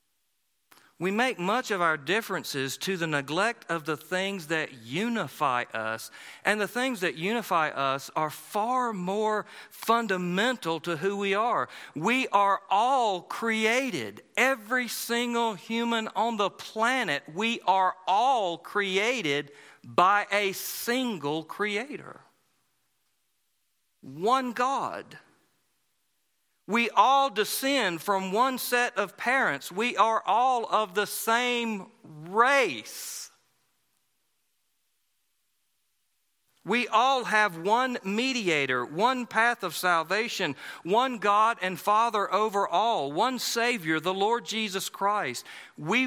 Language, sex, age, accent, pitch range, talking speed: English, male, 40-59, American, 180-235 Hz, 110 wpm